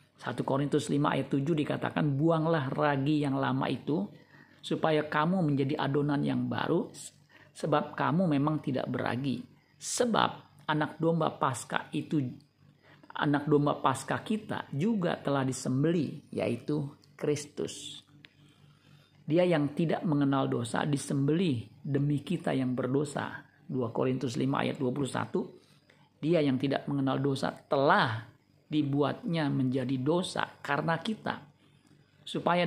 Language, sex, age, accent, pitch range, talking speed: Indonesian, male, 50-69, native, 140-155 Hz, 115 wpm